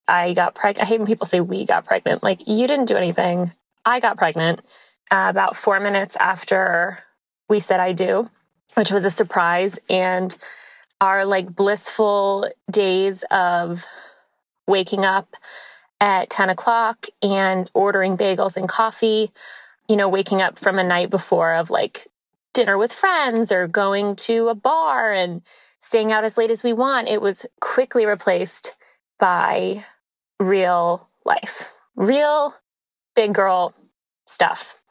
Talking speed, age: 145 wpm, 20-39